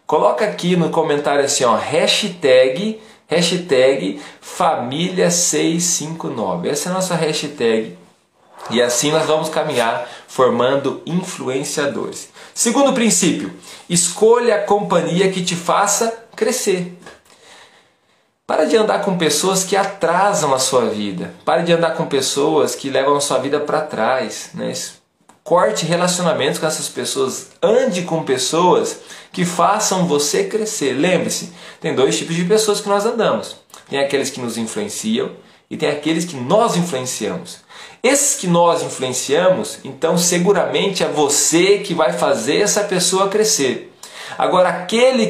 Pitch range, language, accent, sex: 150-205 Hz, Portuguese, Brazilian, male